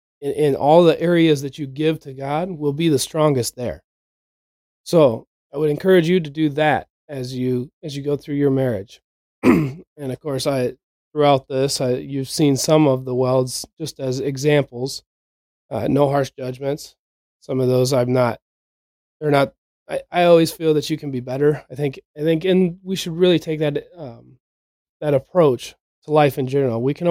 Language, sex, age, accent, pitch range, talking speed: English, male, 30-49, American, 125-150 Hz, 190 wpm